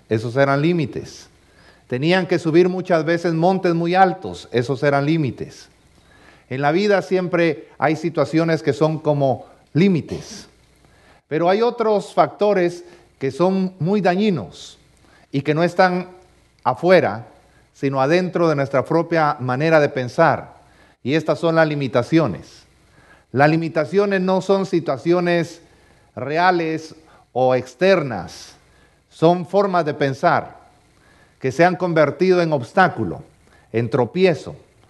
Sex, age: male, 40-59